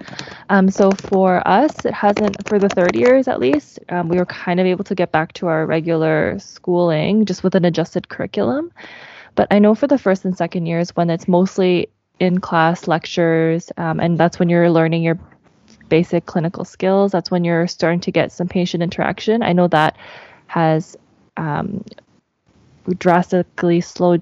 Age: 20-39